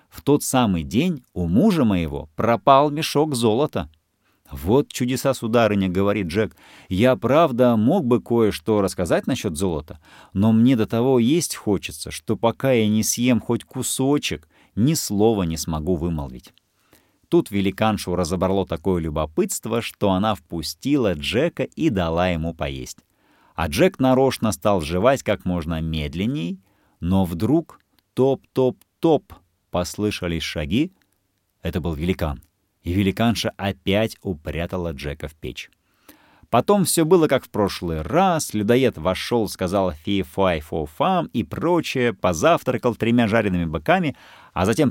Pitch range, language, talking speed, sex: 85-120 Hz, Russian, 130 wpm, male